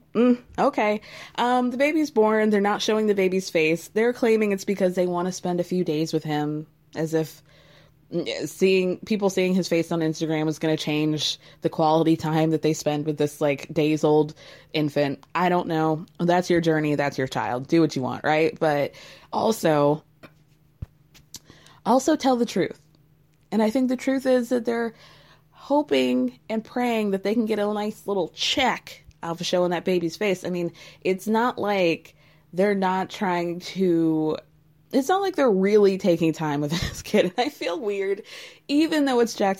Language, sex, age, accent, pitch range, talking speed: English, female, 20-39, American, 155-210 Hz, 185 wpm